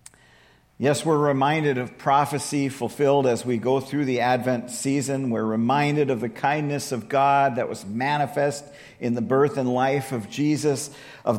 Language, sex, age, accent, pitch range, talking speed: English, male, 50-69, American, 140-160 Hz, 165 wpm